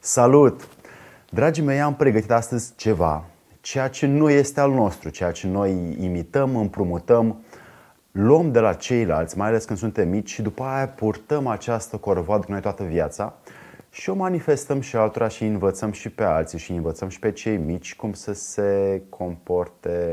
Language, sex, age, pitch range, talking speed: Romanian, male, 30-49, 95-140 Hz, 170 wpm